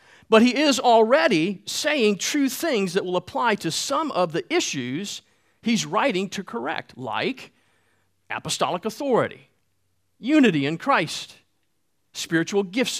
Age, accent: 50-69, American